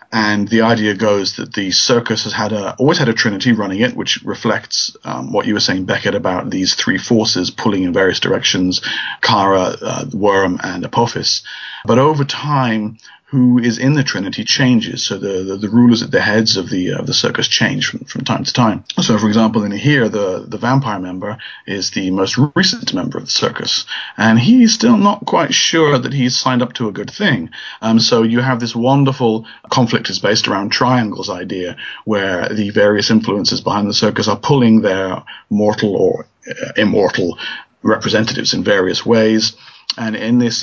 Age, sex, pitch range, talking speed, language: 40-59, male, 105-130 Hz, 195 wpm, English